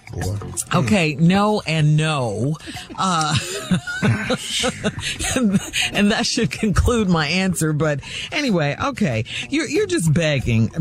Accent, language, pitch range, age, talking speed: American, English, 135-195 Hz, 50-69, 105 wpm